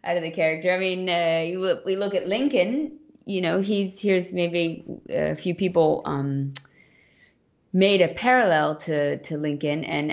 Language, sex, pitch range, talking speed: English, female, 140-175 Hz, 170 wpm